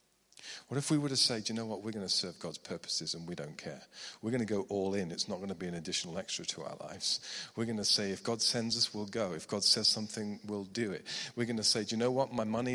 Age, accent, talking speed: 40-59, British, 300 wpm